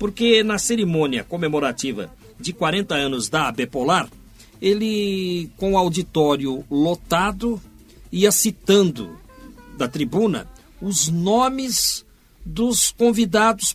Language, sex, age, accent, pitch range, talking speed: Portuguese, male, 60-79, Brazilian, 155-220 Hz, 100 wpm